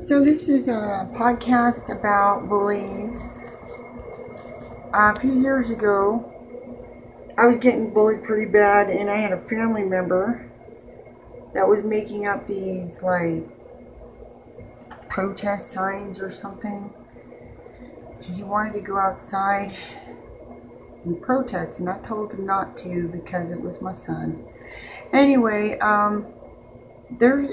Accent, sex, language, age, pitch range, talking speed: American, female, English, 30-49, 175-220 Hz, 120 wpm